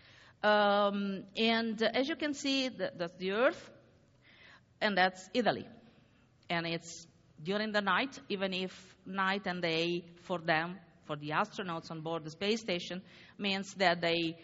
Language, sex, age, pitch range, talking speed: English, female, 50-69, 165-215 Hz, 150 wpm